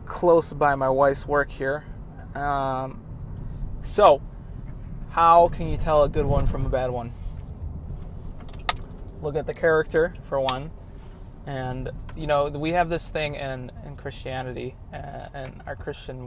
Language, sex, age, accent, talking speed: English, male, 20-39, American, 145 wpm